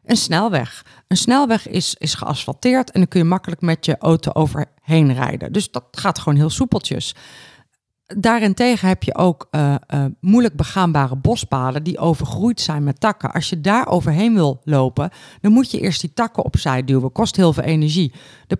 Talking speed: 185 wpm